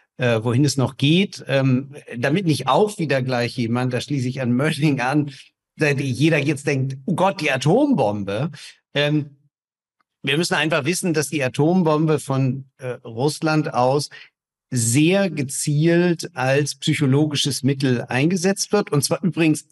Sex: male